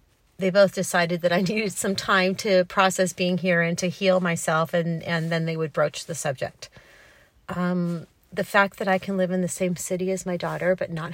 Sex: female